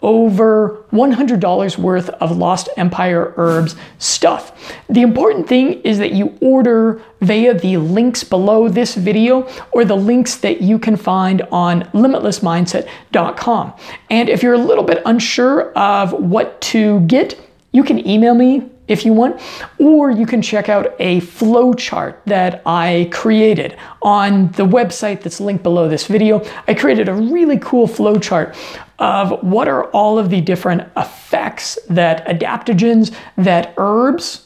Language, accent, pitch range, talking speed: English, American, 180-235 Hz, 150 wpm